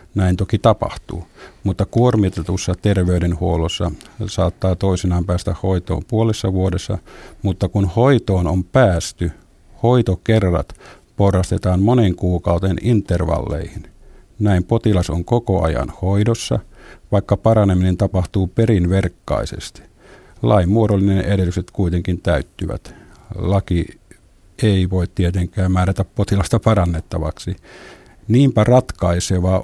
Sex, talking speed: male, 95 wpm